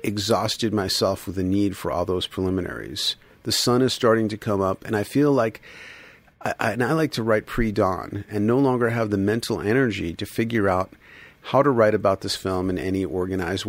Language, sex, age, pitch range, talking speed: English, male, 40-59, 95-110 Hz, 200 wpm